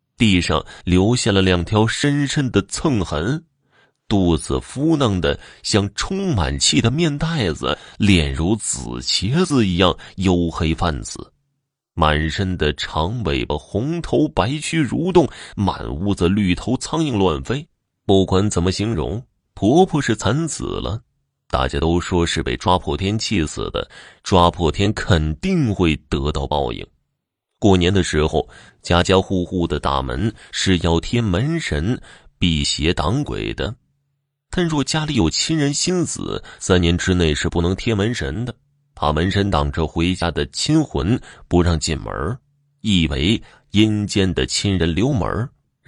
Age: 30-49